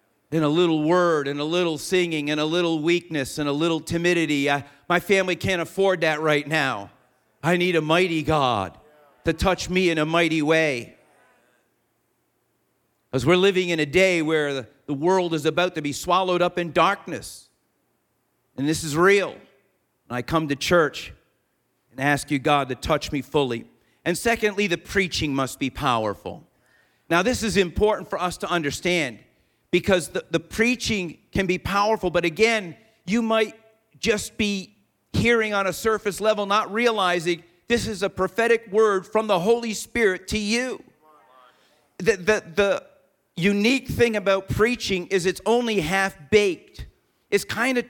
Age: 50-69